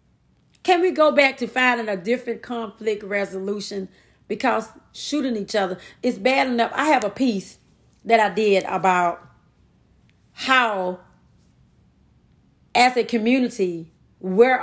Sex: female